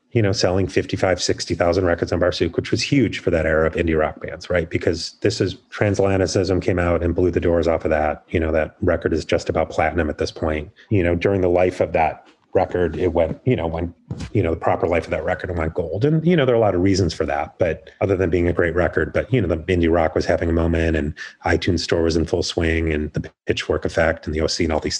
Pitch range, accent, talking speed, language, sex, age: 85-110 Hz, American, 270 wpm, English, male, 30-49